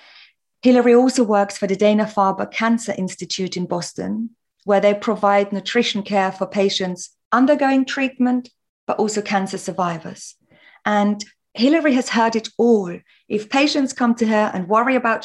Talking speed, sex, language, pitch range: 145 wpm, female, English, 195-240 Hz